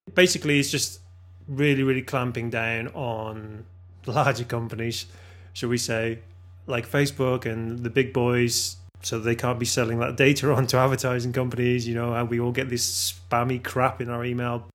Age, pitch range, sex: 20-39, 115-135 Hz, male